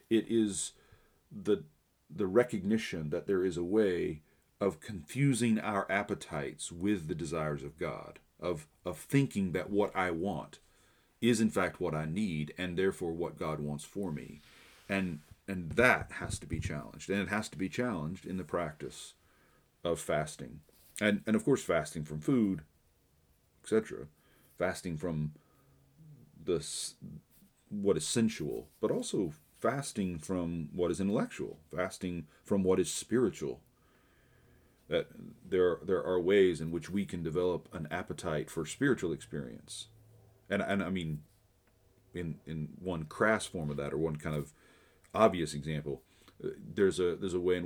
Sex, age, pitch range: male, 40-59, 80-100 Hz